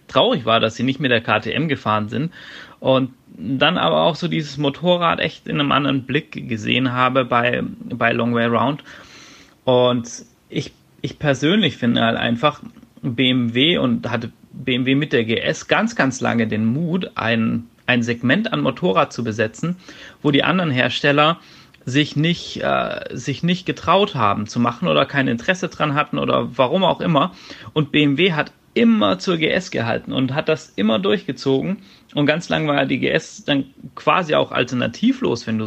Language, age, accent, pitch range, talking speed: German, 30-49, German, 120-155 Hz, 170 wpm